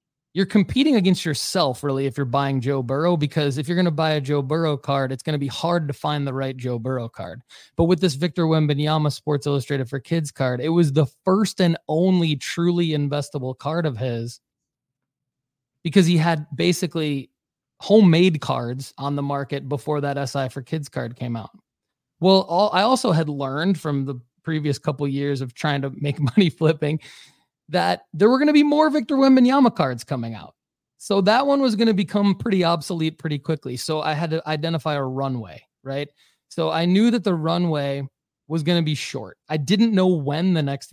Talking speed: 195 wpm